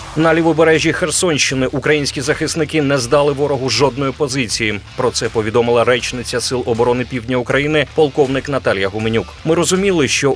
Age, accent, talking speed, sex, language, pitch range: 30-49, native, 140 wpm, male, Ukrainian, 120-145 Hz